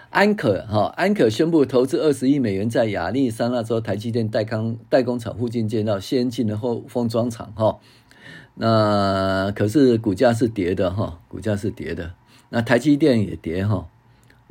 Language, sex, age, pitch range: Chinese, male, 50-69, 100-130 Hz